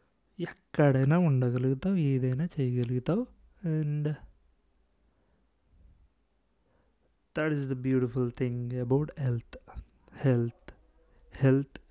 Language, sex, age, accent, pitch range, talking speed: Telugu, male, 30-49, native, 130-185 Hz, 75 wpm